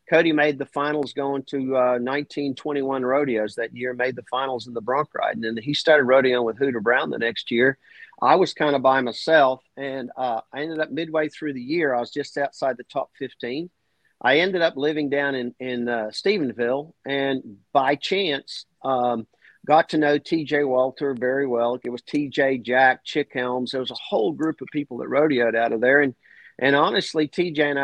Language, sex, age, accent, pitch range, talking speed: English, male, 50-69, American, 130-150 Hz, 205 wpm